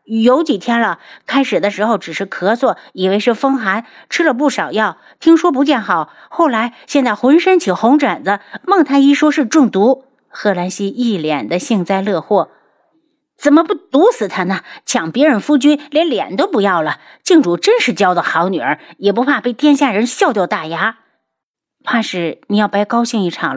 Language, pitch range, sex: Chinese, 165-260 Hz, female